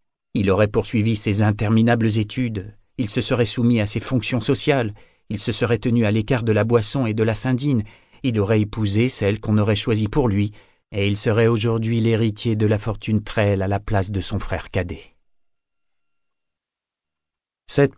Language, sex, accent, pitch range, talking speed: French, male, French, 100-115 Hz, 175 wpm